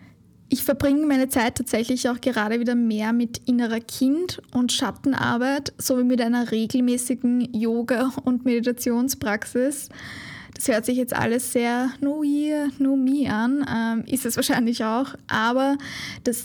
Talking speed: 140 wpm